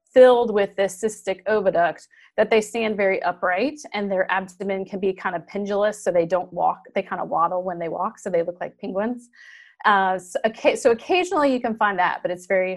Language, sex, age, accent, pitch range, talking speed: English, female, 30-49, American, 185-230 Hz, 210 wpm